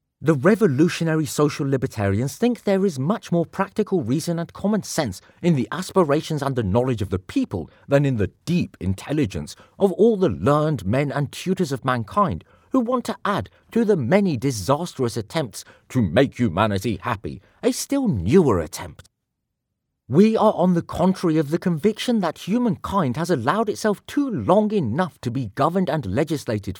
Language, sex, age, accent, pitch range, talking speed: English, male, 40-59, British, 120-185 Hz, 170 wpm